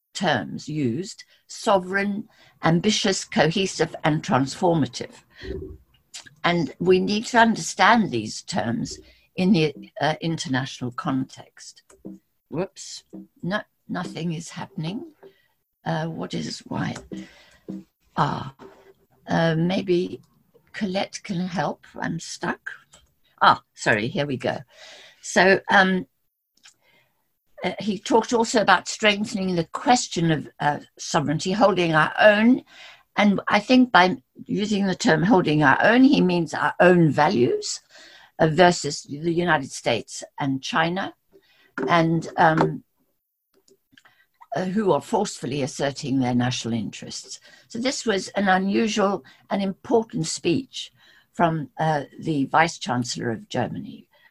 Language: English